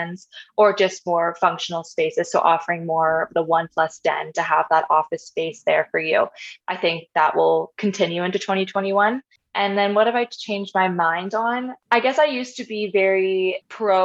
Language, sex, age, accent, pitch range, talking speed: English, female, 20-39, American, 170-210 Hz, 190 wpm